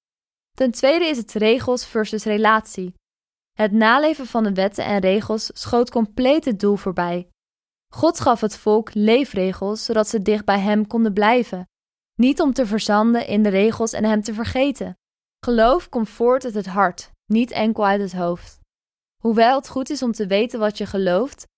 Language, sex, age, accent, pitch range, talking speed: Dutch, female, 20-39, Dutch, 200-240 Hz, 175 wpm